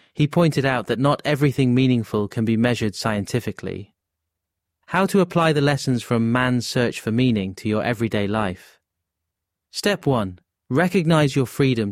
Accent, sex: British, male